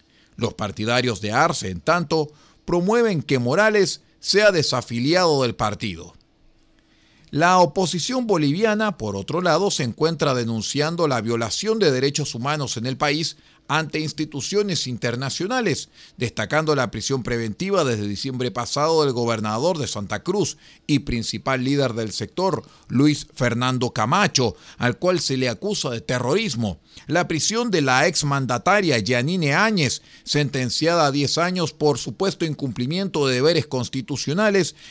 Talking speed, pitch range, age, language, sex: 130 wpm, 120-170 Hz, 40-59, Spanish, male